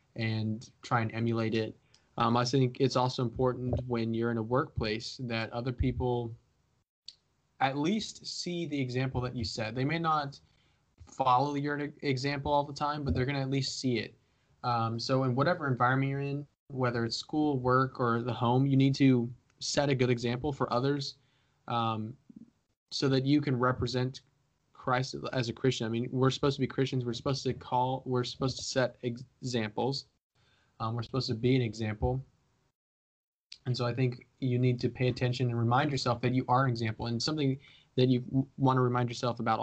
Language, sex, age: English, male, 20-39